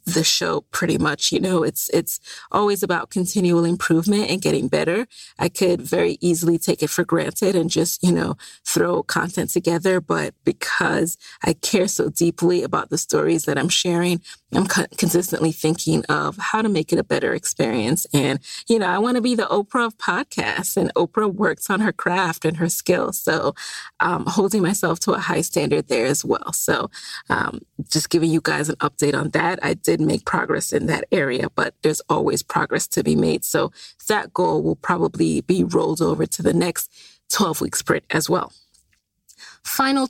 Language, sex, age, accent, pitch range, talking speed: English, female, 30-49, American, 165-215 Hz, 185 wpm